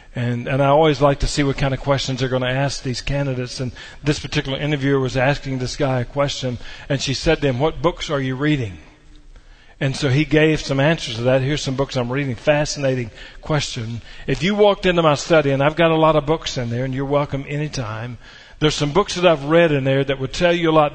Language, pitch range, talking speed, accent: English, 135-160 Hz, 245 wpm, American